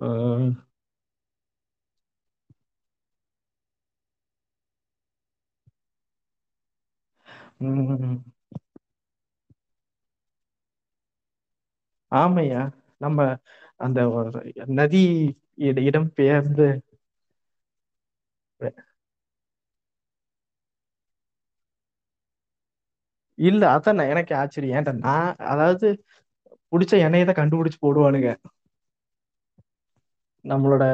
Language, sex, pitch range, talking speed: Tamil, male, 120-160 Hz, 35 wpm